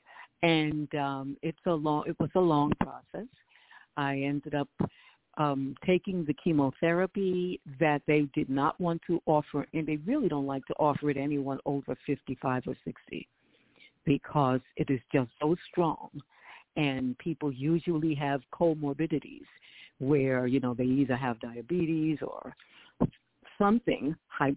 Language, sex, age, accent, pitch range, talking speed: English, female, 50-69, American, 140-170 Hz, 140 wpm